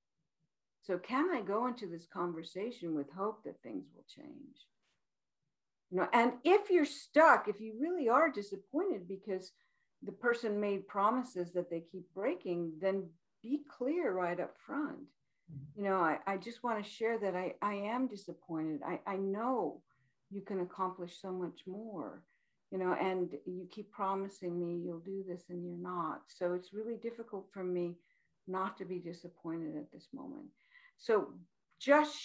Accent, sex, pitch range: American, female, 165-225 Hz